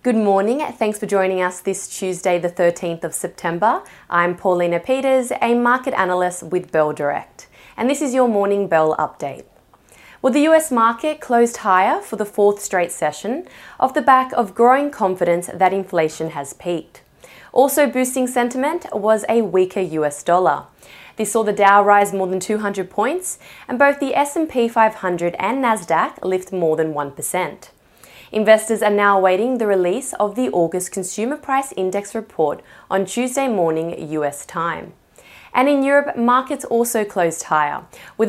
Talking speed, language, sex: 160 wpm, English, female